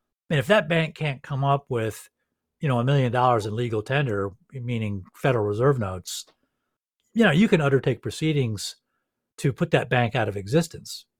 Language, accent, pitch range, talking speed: English, American, 125-165 Hz, 180 wpm